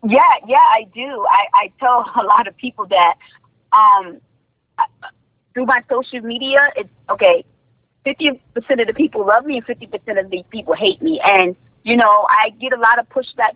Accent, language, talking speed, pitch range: American, English, 180 wpm, 210-270 Hz